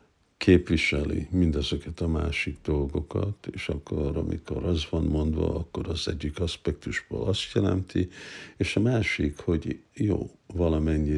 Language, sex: Hungarian, male